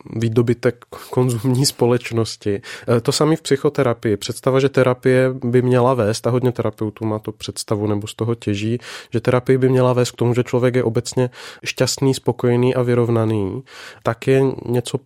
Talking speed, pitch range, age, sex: 165 wpm, 115-130 Hz, 30-49, male